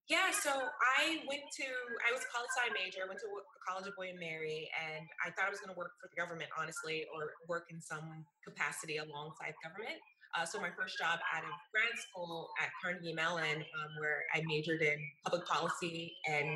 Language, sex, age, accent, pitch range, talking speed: English, female, 20-39, American, 160-235 Hz, 210 wpm